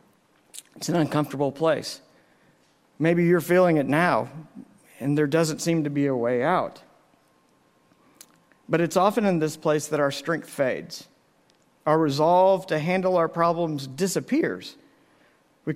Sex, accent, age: male, American, 50-69